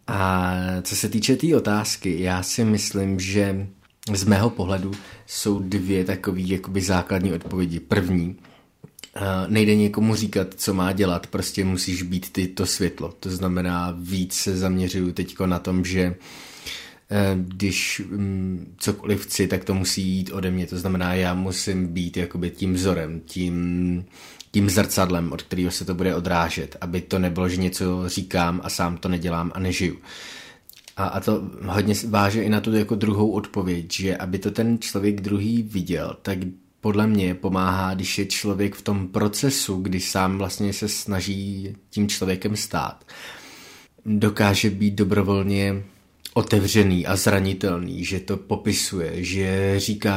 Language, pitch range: Czech, 90-100 Hz